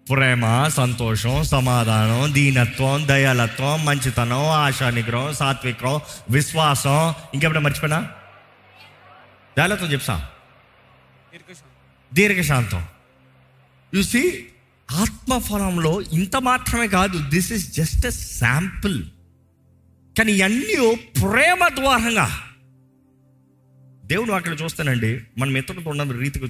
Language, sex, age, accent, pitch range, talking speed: Telugu, male, 30-49, native, 125-185 Hz, 80 wpm